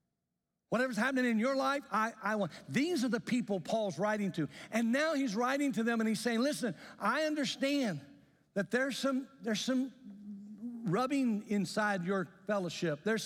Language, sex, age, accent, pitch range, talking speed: English, male, 60-79, American, 155-230 Hz, 165 wpm